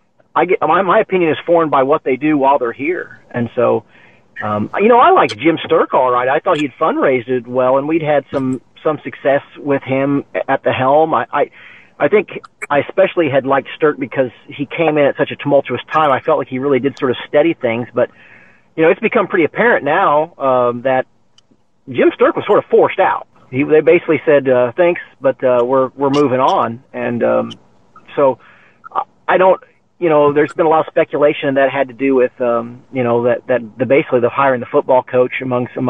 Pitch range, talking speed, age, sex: 125-150 Hz, 220 wpm, 40-59, male